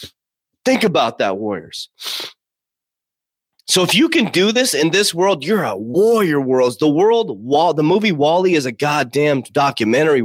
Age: 30-49